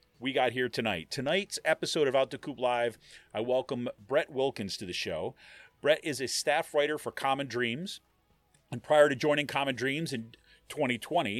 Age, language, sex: 40-59, English, male